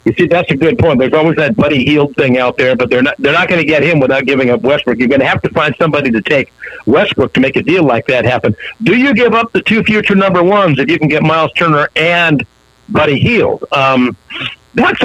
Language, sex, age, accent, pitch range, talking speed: English, male, 60-79, American, 145-200 Hz, 255 wpm